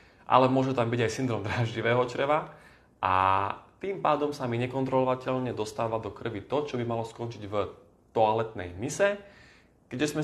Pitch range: 105-130 Hz